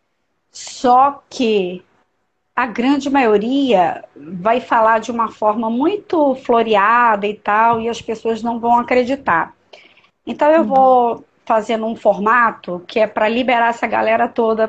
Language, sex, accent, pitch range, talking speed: Portuguese, female, Brazilian, 220-280 Hz, 135 wpm